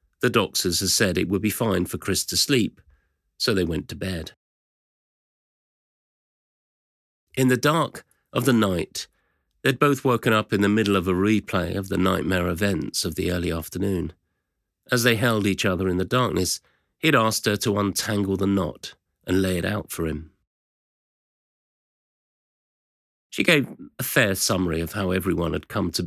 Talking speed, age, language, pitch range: 170 wpm, 40-59, English, 85-110 Hz